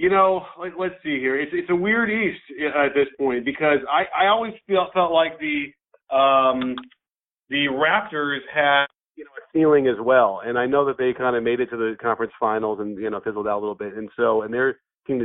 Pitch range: 120-150 Hz